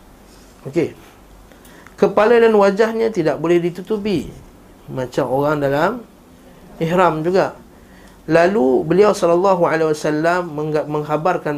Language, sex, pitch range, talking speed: Malay, male, 145-195 Hz, 95 wpm